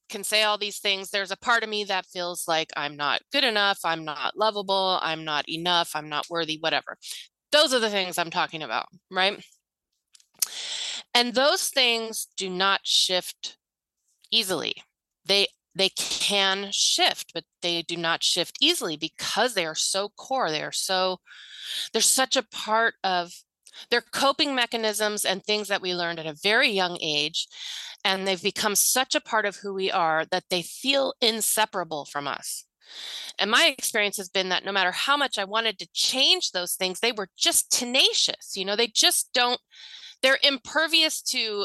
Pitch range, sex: 185-245 Hz, female